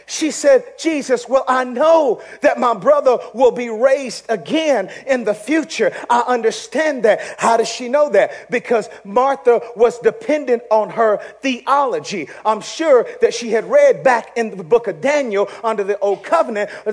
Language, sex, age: English, male, 40-59